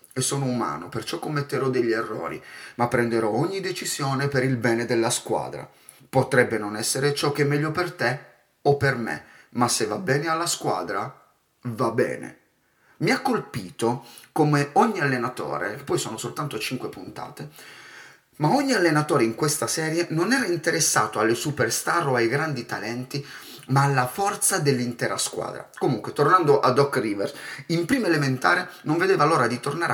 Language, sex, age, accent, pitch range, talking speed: Italian, male, 30-49, native, 125-170 Hz, 160 wpm